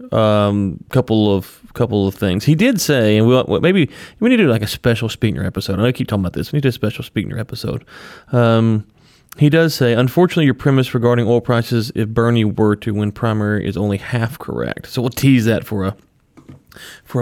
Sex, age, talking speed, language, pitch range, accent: male, 30-49, 220 wpm, English, 105-130 Hz, American